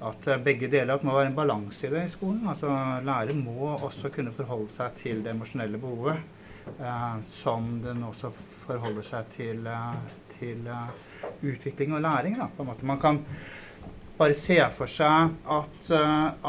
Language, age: English, 30-49